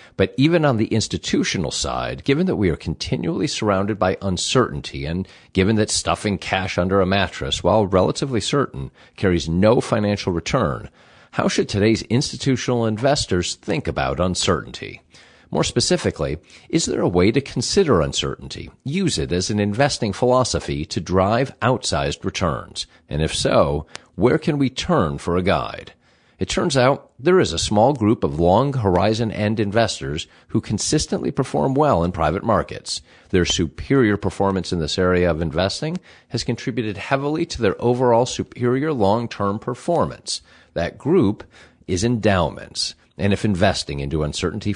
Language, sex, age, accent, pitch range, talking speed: English, male, 50-69, American, 90-120 Hz, 150 wpm